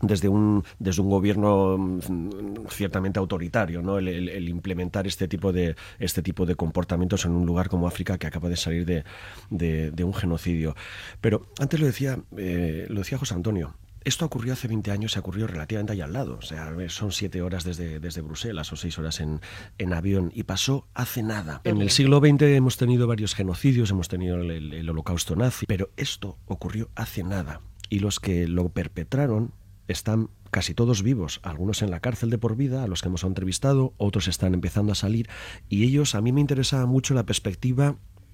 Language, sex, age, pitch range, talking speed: Spanish, male, 30-49, 90-115 Hz, 195 wpm